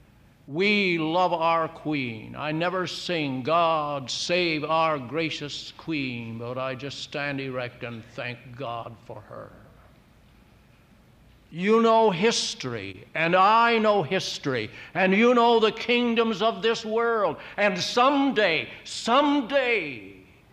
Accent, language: American, English